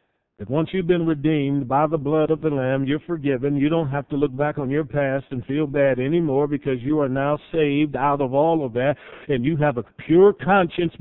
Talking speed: 230 wpm